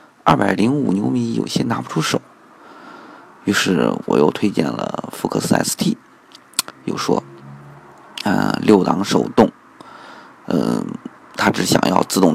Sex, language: male, Chinese